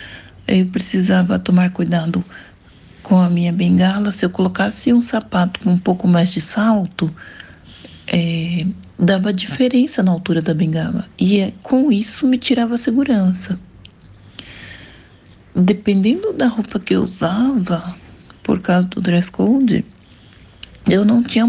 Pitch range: 165-210 Hz